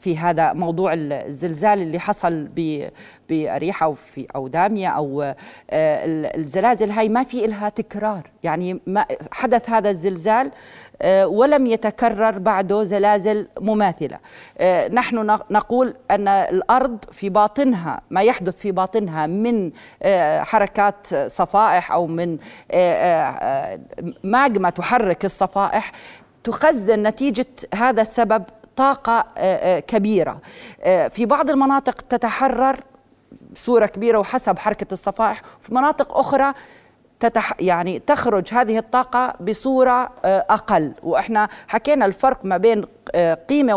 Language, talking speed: Arabic, 100 wpm